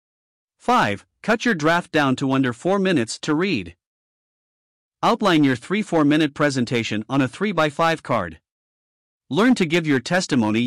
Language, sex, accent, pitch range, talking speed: English, male, American, 125-175 Hz, 140 wpm